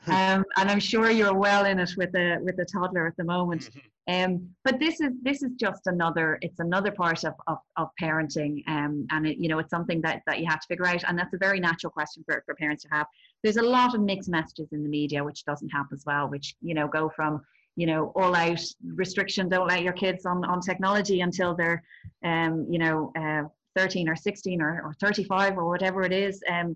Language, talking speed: English, 235 wpm